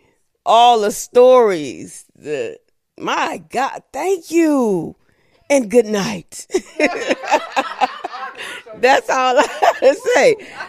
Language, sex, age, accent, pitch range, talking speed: English, female, 40-59, American, 205-305 Hz, 95 wpm